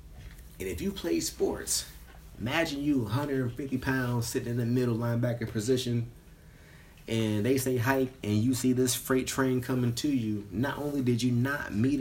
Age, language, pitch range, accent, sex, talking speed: 30-49, English, 115-135 Hz, American, male, 170 wpm